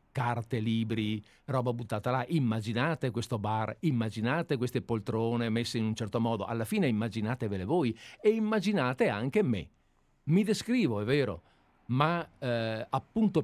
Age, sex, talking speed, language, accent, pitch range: 50-69, male, 140 wpm, Italian, native, 110-155 Hz